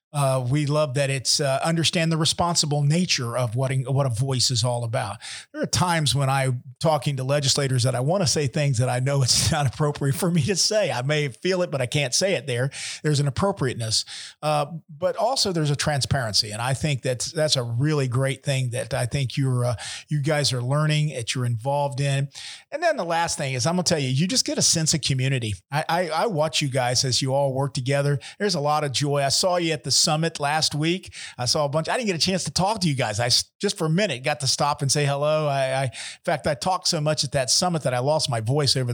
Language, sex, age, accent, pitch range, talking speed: English, male, 40-59, American, 130-155 Hz, 255 wpm